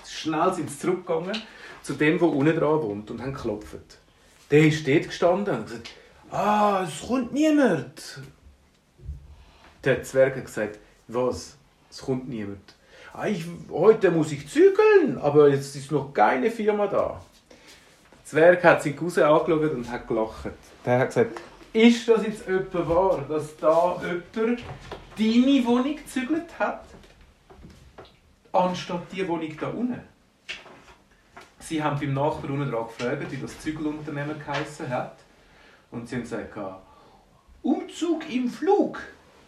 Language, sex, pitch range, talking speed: German, male, 135-210 Hz, 140 wpm